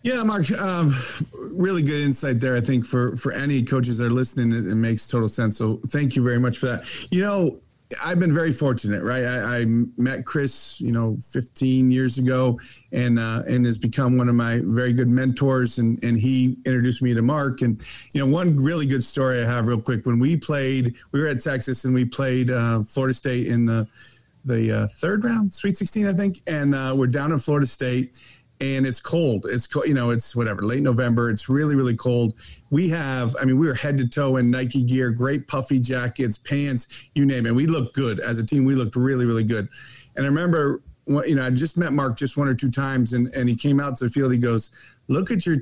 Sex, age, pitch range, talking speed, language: male, 40-59, 120-140 Hz, 230 wpm, English